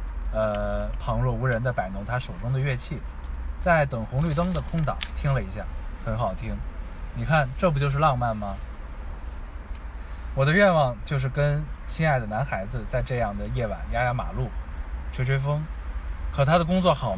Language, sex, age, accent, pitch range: Chinese, male, 20-39, native, 95-140 Hz